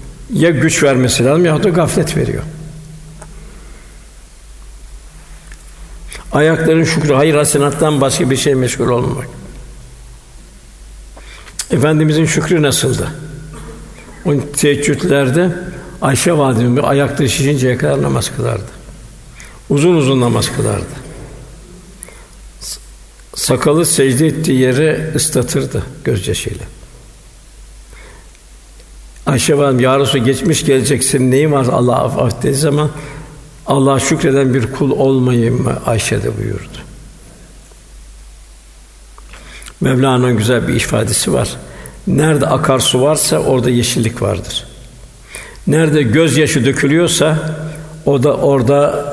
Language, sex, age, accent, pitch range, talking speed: Turkish, male, 60-79, native, 125-150 Hz, 90 wpm